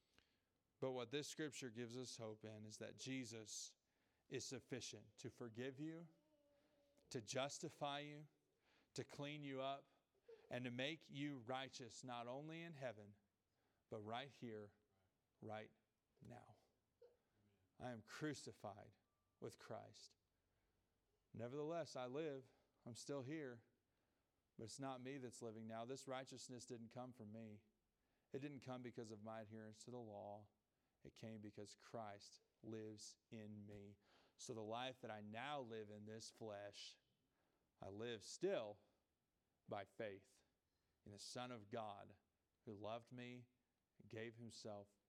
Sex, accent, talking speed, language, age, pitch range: male, American, 140 wpm, English, 40-59, 105-130 Hz